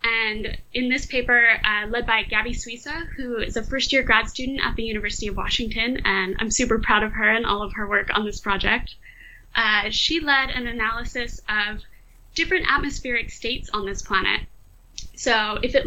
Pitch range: 225-280 Hz